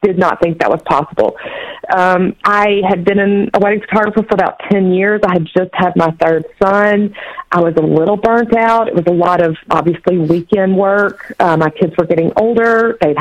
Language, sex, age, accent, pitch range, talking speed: English, female, 40-59, American, 165-210 Hz, 210 wpm